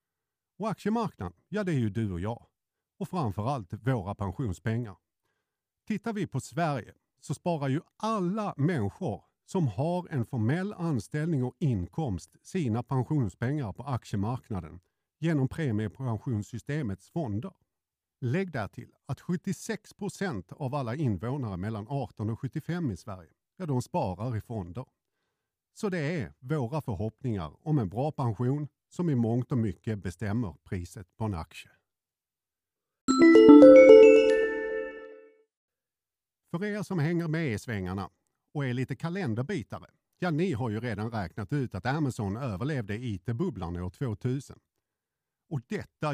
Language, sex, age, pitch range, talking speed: Swedish, male, 50-69, 110-160 Hz, 130 wpm